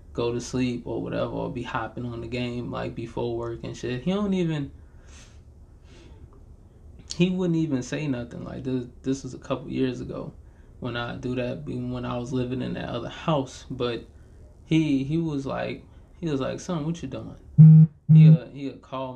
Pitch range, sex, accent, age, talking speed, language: 120-145 Hz, male, American, 20-39, 190 wpm, English